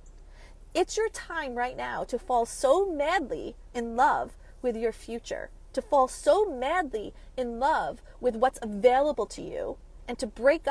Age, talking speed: 40-59, 155 wpm